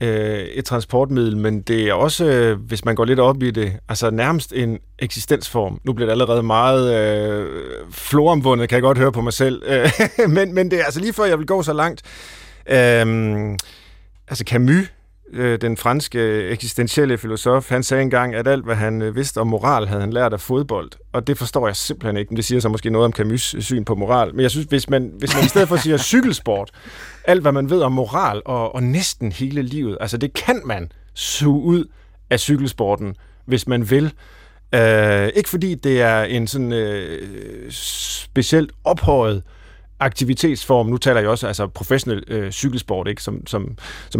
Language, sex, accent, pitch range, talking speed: Danish, male, native, 110-140 Hz, 190 wpm